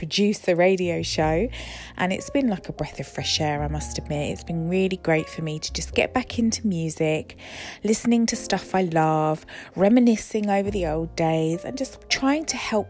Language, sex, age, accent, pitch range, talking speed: English, female, 20-39, British, 155-215 Hz, 200 wpm